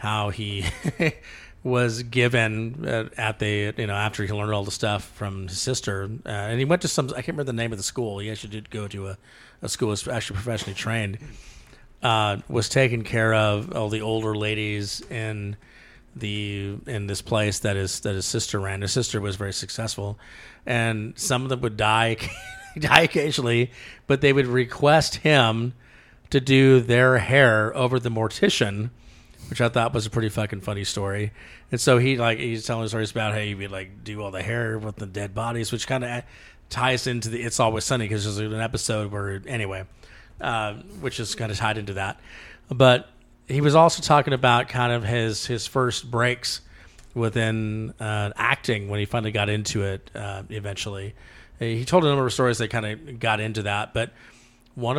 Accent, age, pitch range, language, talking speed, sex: American, 40-59, 105-125 Hz, English, 195 wpm, male